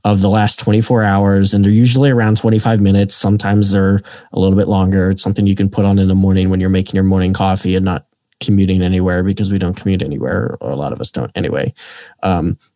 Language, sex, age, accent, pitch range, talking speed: English, male, 20-39, American, 95-110 Hz, 230 wpm